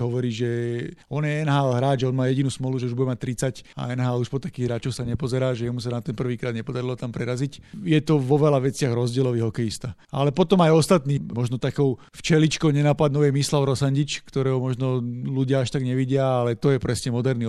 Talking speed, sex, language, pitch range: 215 wpm, male, Slovak, 125-150 Hz